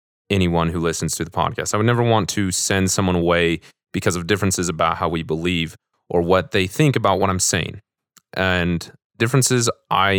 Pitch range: 90-110 Hz